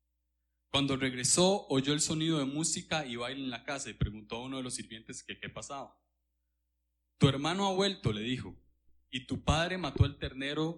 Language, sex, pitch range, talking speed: Spanish, male, 105-145 Hz, 190 wpm